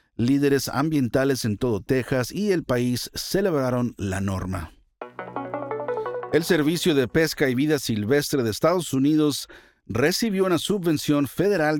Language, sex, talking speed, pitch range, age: Spanish, male, 125 wpm, 115-155 Hz, 50-69